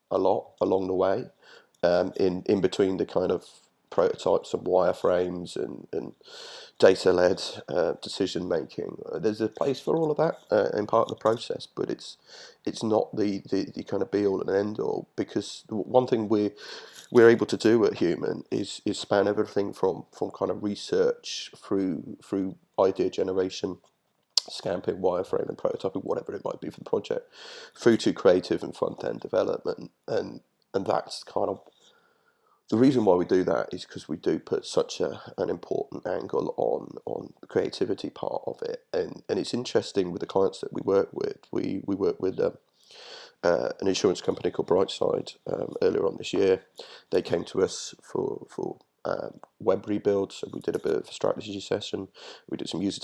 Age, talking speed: 30-49, 190 wpm